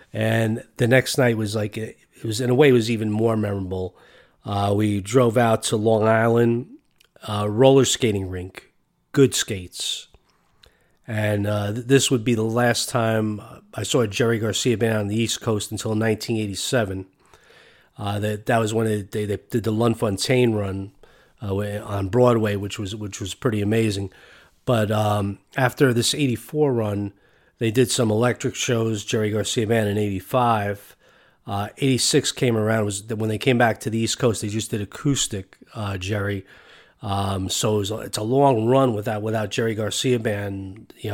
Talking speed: 175 wpm